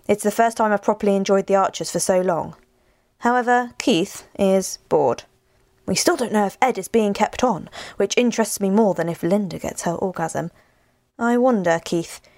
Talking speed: 190 wpm